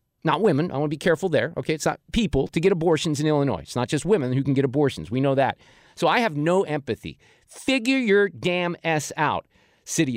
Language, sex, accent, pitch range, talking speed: English, male, American, 130-195 Hz, 230 wpm